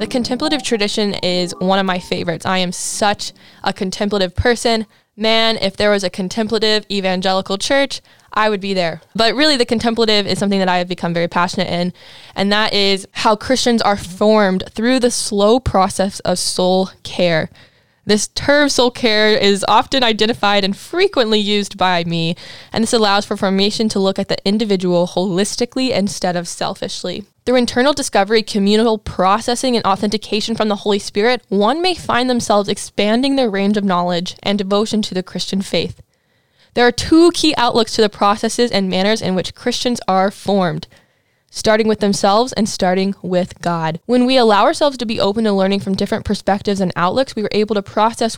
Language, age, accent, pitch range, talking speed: English, 10-29, American, 190-225 Hz, 180 wpm